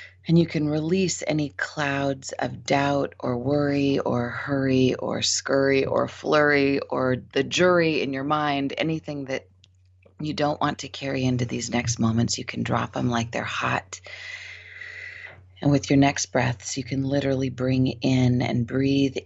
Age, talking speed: 30-49, 160 wpm